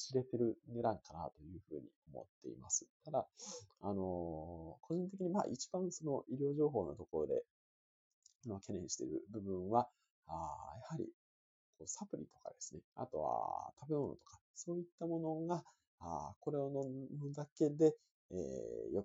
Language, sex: Japanese, male